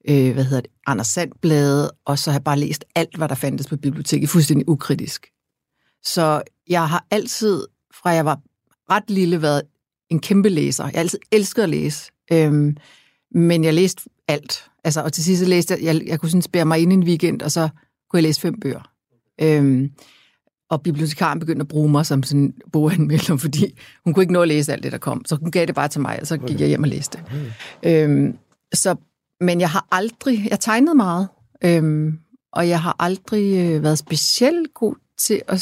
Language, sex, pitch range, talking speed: Danish, female, 145-180 Hz, 200 wpm